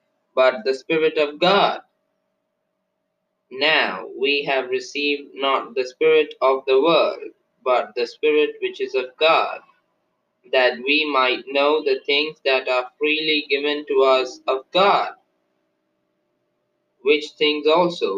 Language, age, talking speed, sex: English, 20-39, 130 wpm, male